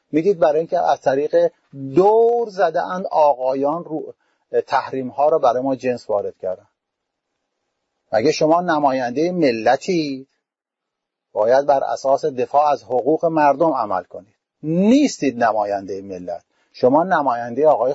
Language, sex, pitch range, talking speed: English, male, 130-180 Hz, 115 wpm